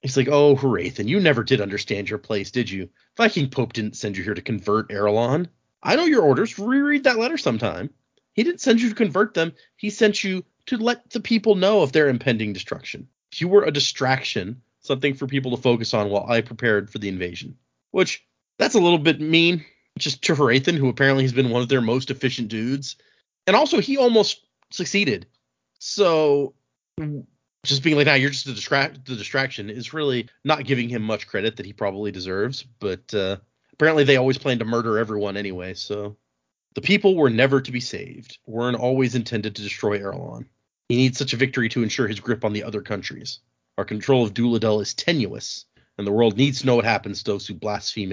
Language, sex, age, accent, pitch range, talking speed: English, male, 30-49, American, 105-145 Hz, 210 wpm